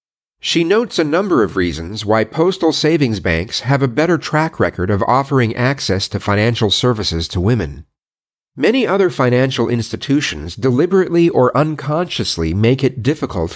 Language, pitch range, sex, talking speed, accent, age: English, 100-145 Hz, male, 145 wpm, American, 40-59